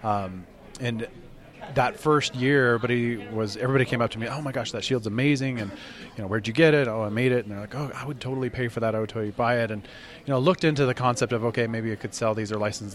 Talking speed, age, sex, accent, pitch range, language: 275 wpm, 20-39, male, American, 100-125 Hz, English